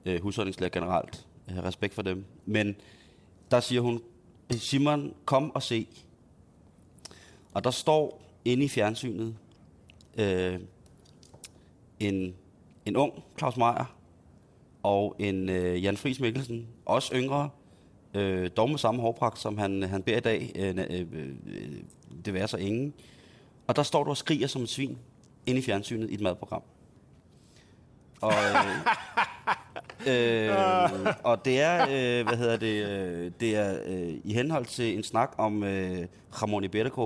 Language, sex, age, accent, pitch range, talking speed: Danish, male, 30-49, native, 95-125 Hz, 135 wpm